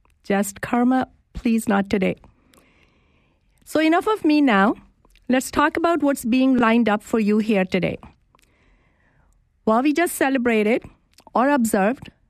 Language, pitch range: English, 205-250 Hz